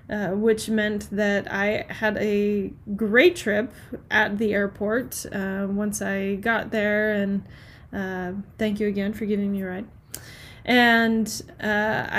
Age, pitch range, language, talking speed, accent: 10-29, 200-225 Hz, English, 145 wpm, American